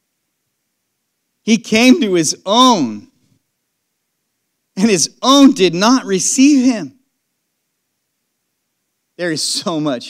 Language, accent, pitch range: English, American, 250-330 Hz